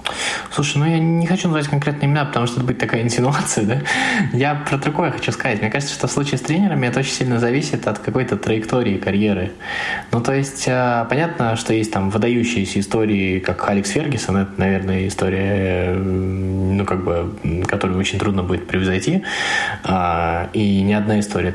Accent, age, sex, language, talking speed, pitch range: native, 20-39, male, Russian, 175 wpm, 95-130 Hz